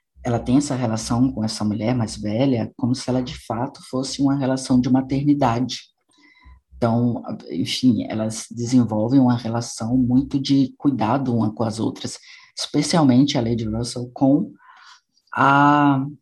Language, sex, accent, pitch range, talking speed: Portuguese, female, Brazilian, 115-135 Hz, 140 wpm